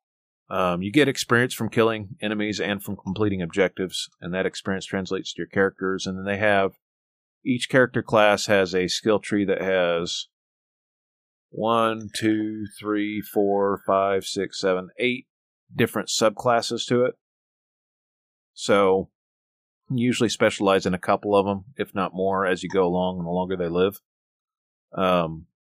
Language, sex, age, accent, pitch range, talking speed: English, male, 40-59, American, 90-105 Hz, 150 wpm